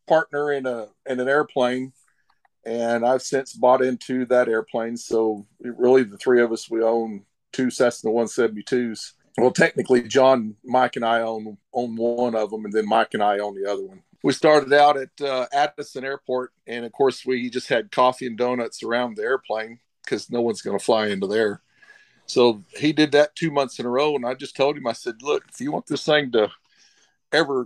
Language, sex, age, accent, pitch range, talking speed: English, male, 50-69, American, 115-135 Hz, 210 wpm